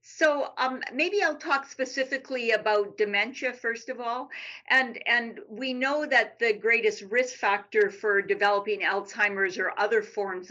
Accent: American